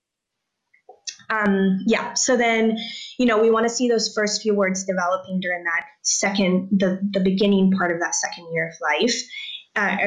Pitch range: 180-225 Hz